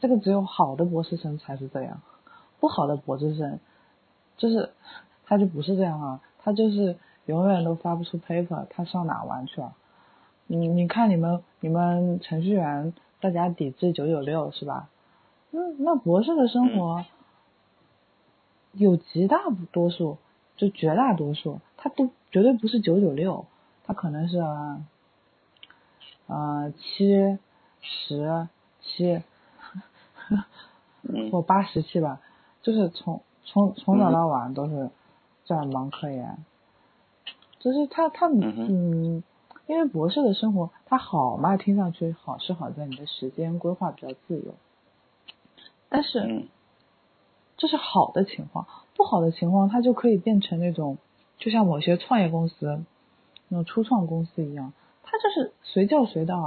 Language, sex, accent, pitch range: Chinese, female, native, 165-220 Hz